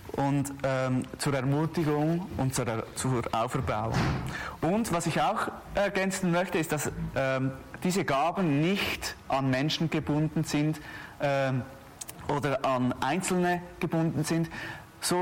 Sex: male